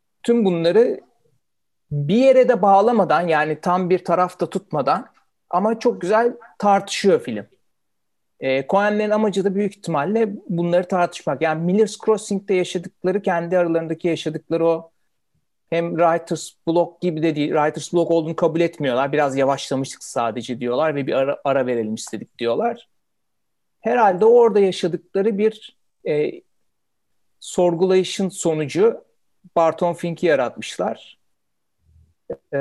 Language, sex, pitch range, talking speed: Turkish, male, 155-200 Hz, 115 wpm